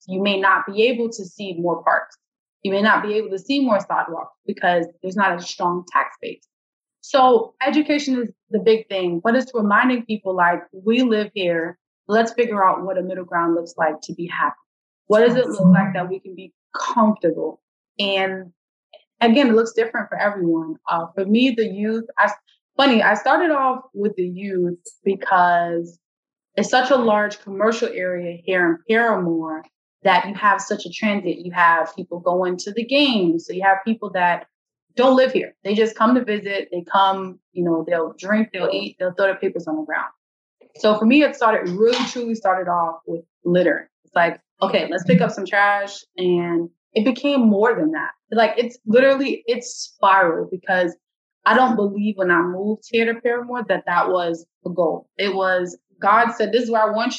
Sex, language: female, English